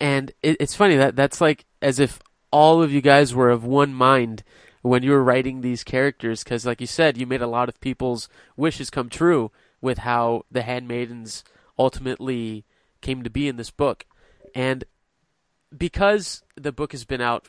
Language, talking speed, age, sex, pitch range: English, 180 wpm, 20-39, male, 120-145 Hz